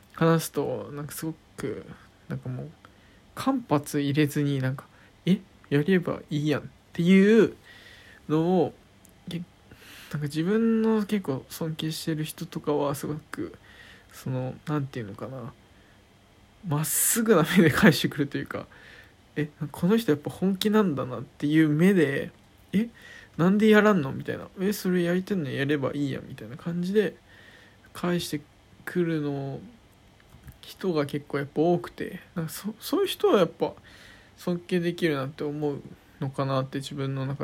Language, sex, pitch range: Japanese, male, 130-180 Hz